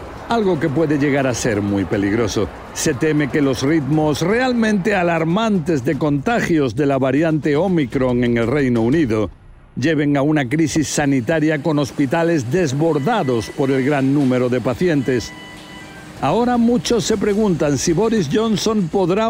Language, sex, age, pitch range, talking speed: Spanish, male, 60-79, 150-210 Hz, 145 wpm